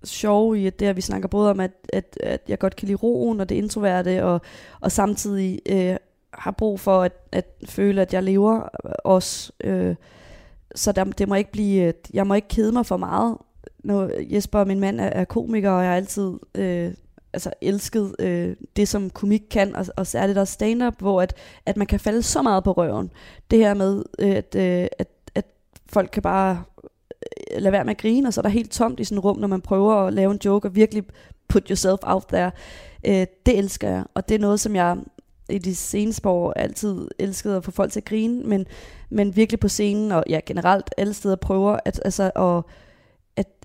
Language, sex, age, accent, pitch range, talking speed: Danish, female, 20-39, native, 185-205 Hz, 215 wpm